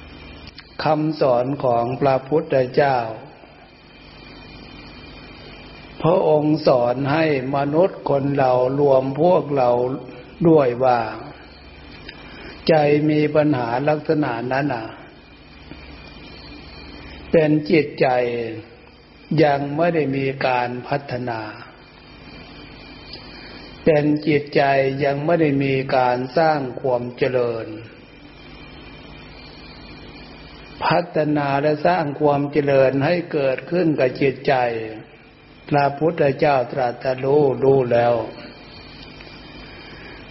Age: 60-79